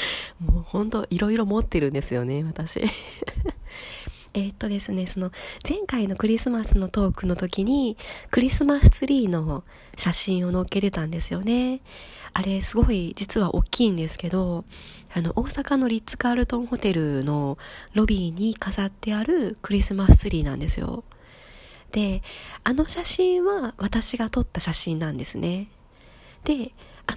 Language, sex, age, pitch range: Japanese, female, 20-39, 175-240 Hz